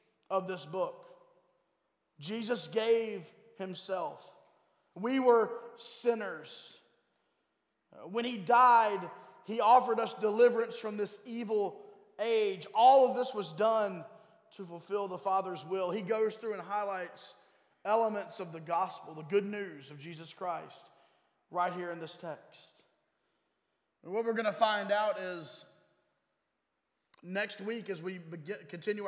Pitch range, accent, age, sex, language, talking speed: 180-225 Hz, American, 20-39, male, English, 130 wpm